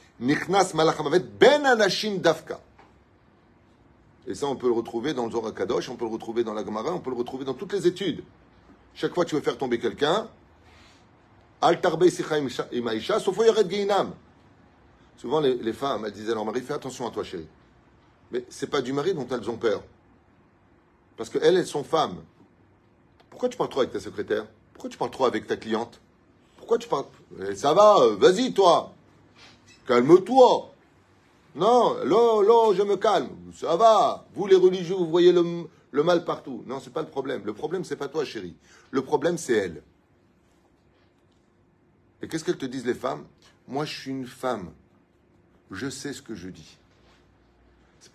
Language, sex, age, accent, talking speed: French, male, 30-49, French, 175 wpm